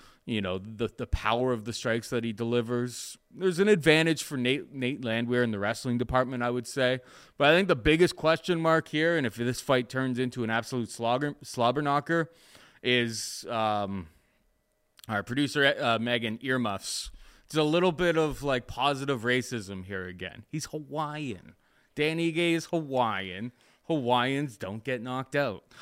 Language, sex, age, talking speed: English, male, 20-39, 165 wpm